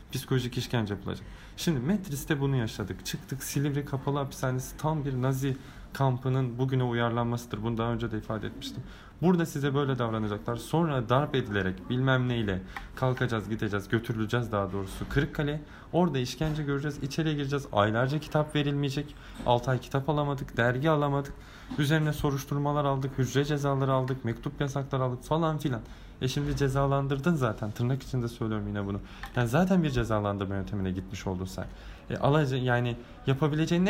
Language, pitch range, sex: Turkish, 110-145 Hz, male